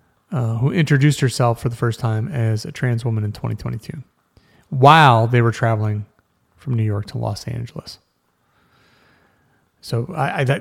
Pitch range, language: 115-145 Hz, English